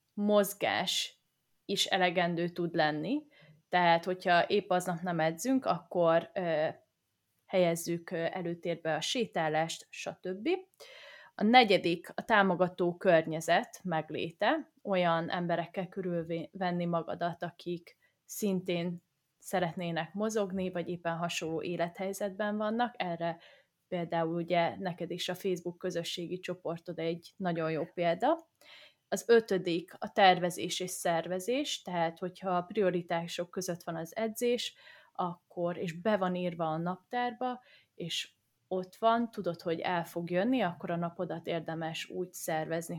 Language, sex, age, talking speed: Hungarian, female, 20-39, 115 wpm